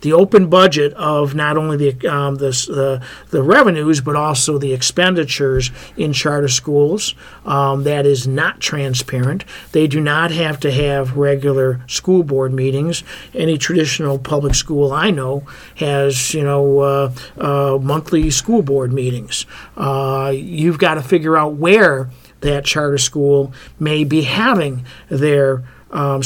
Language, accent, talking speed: English, American, 145 wpm